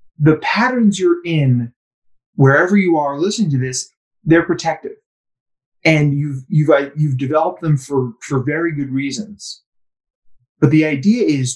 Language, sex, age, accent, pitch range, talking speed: English, male, 30-49, American, 130-195 Hz, 140 wpm